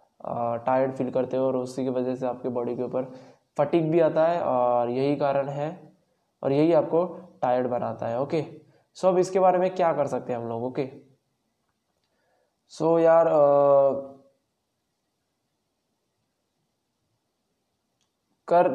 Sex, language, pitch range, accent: male, Hindi, 130-155 Hz, native